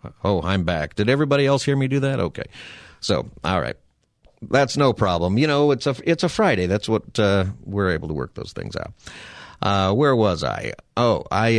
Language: English